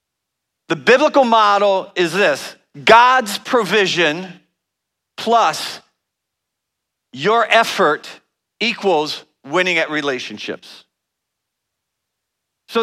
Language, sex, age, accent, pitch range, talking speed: English, male, 50-69, American, 175-225 Hz, 70 wpm